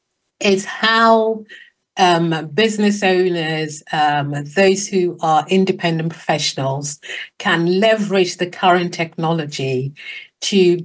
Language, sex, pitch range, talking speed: English, female, 160-210 Hz, 95 wpm